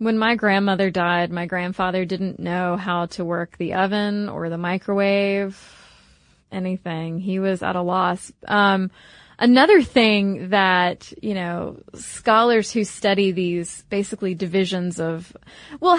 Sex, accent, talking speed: female, American, 135 wpm